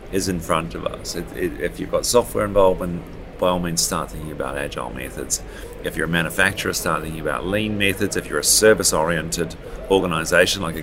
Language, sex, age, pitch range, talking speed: English, male, 40-59, 90-115 Hz, 190 wpm